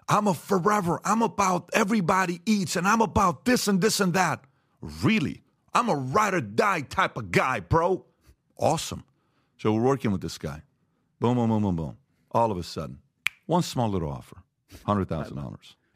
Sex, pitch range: male, 95-155 Hz